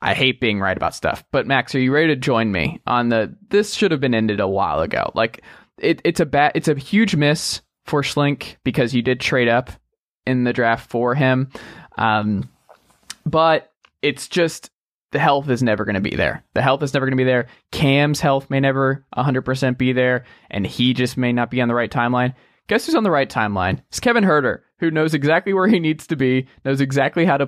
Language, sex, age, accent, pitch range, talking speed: English, male, 20-39, American, 120-155 Hz, 225 wpm